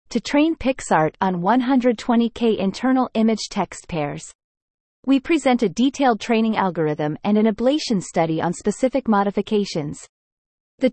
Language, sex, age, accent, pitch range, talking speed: English, female, 30-49, American, 180-255 Hz, 120 wpm